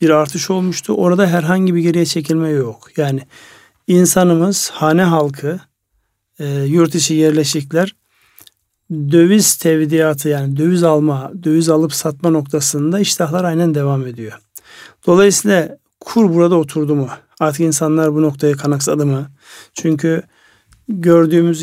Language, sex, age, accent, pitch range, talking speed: Turkish, male, 50-69, native, 145-175 Hz, 115 wpm